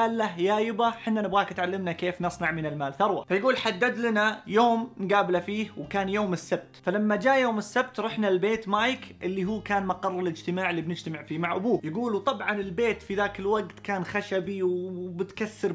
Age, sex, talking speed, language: 20-39, male, 175 wpm, Arabic